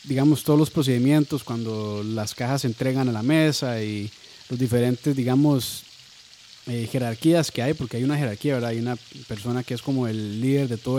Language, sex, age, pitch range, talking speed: Spanish, male, 30-49, 120-150 Hz, 190 wpm